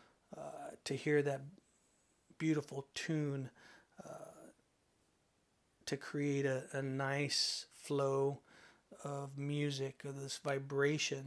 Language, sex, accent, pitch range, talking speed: English, male, American, 135-150 Hz, 95 wpm